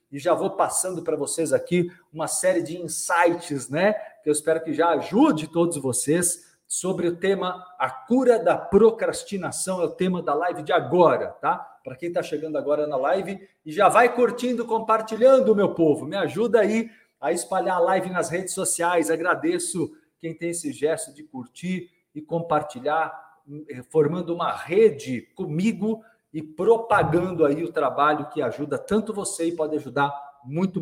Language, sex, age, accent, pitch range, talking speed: Portuguese, male, 50-69, Brazilian, 155-205 Hz, 165 wpm